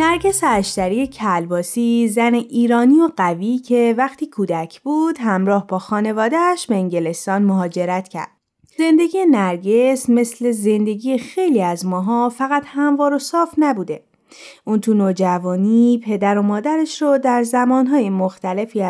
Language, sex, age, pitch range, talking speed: Persian, female, 20-39, 190-255 Hz, 125 wpm